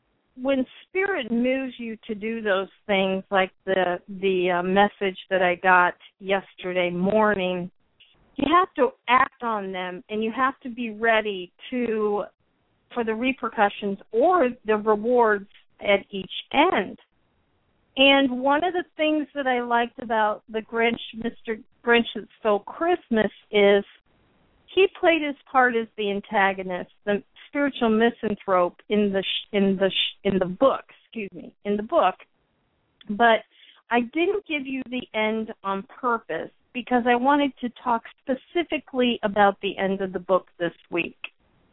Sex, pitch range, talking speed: female, 200-260 Hz, 150 wpm